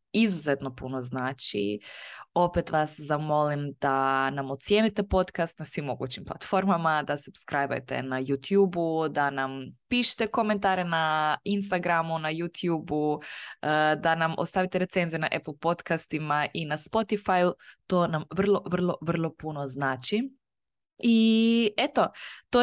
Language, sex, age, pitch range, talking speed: Croatian, female, 20-39, 145-180 Hz, 120 wpm